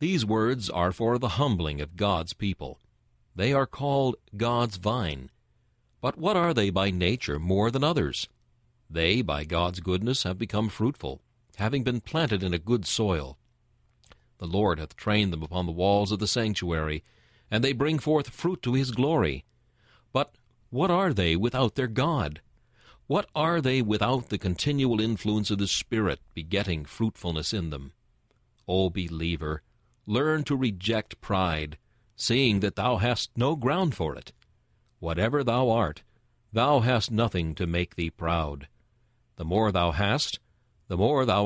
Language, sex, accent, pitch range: English, male, American, 90-120 Hz